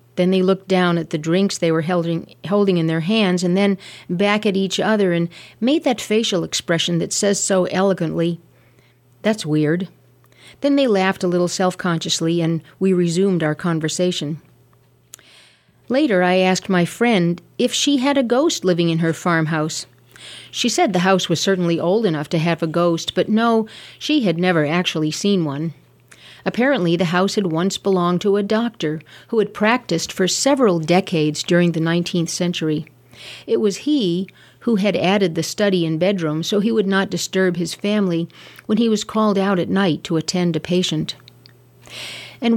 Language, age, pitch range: English, 40-59, 165-205 Hz